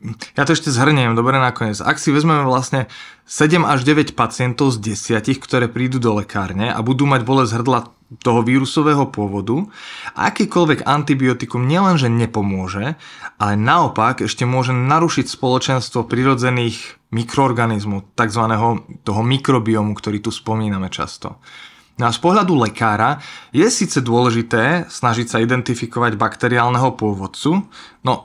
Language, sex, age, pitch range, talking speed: Slovak, male, 20-39, 110-135 Hz, 130 wpm